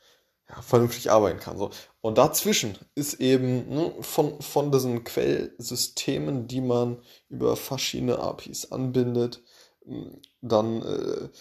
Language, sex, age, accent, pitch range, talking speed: German, male, 20-39, German, 105-125 Hz, 90 wpm